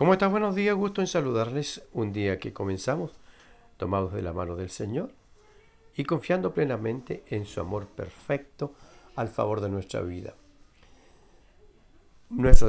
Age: 50-69